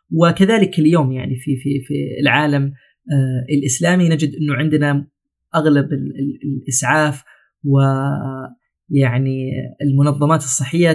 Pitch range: 140-160 Hz